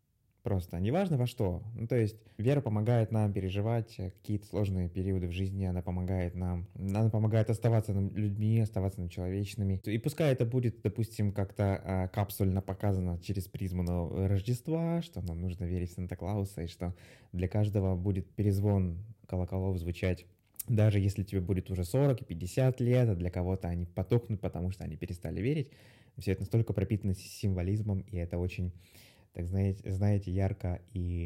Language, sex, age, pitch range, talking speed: Russian, male, 20-39, 95-115 Hz, 155 wpm